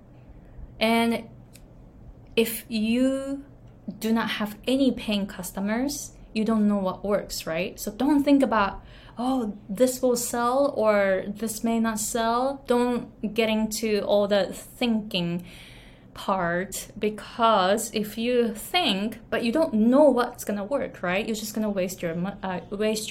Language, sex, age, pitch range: Japanese, female, 20-39, 190-235 Hz